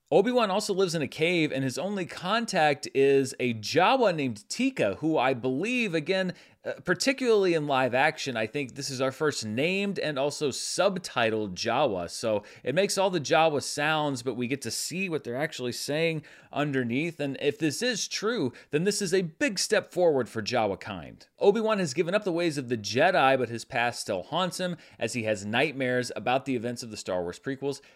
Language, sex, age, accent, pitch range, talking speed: English, male, 30-49, American, 120-180 Hz, 200 wpm